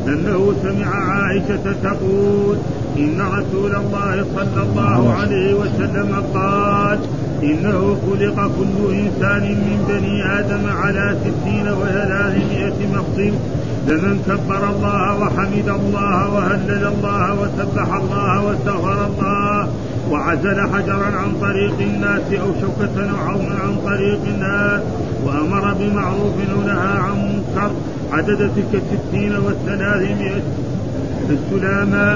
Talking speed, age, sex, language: 100 wpm, 40-59, male, Arabic